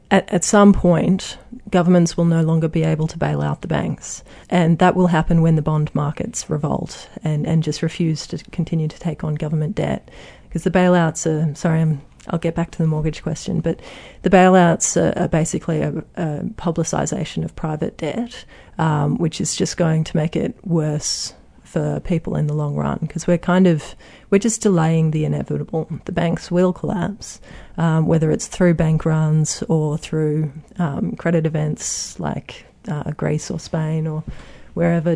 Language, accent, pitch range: English, Australian, 155-180 Hz